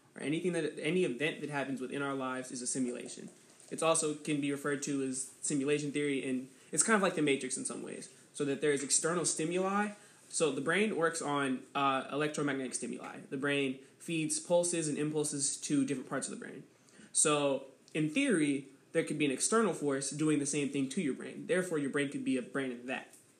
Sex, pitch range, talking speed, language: male, 135-155 Hz, 210 wpm, English